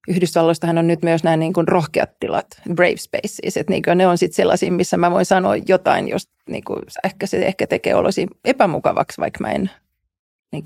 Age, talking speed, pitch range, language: 30-49, 195 wpm, 170-200 Hz, Finnish